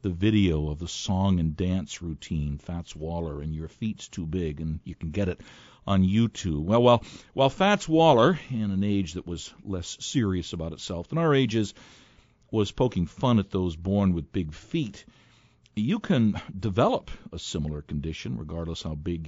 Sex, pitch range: male, 85-125 Hz